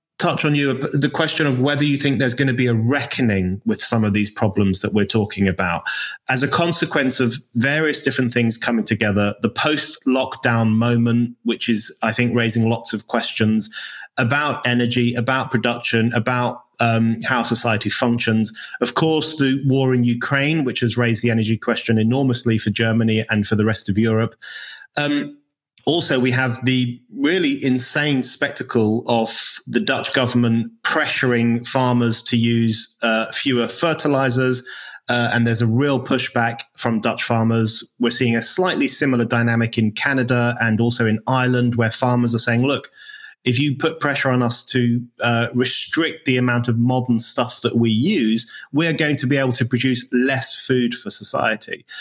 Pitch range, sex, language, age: 115-135 Hz, male, English, 30-49